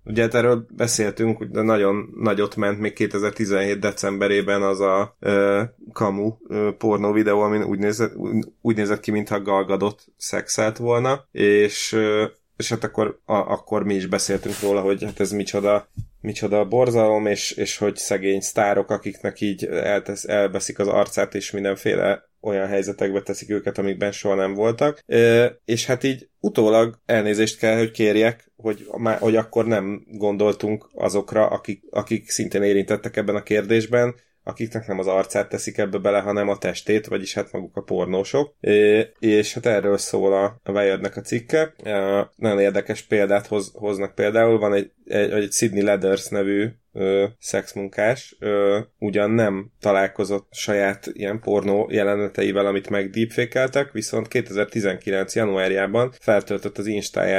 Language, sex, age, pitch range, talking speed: Hungarian, male, 20-39, 100-110 Hz, 150 wpm